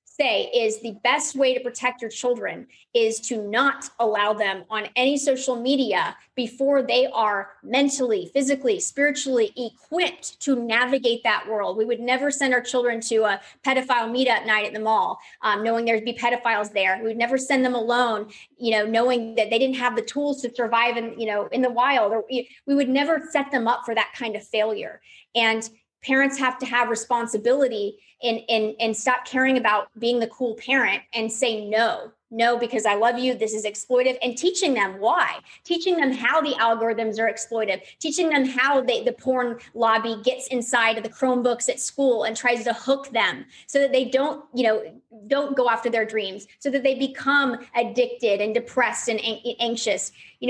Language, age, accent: English, 30-49, American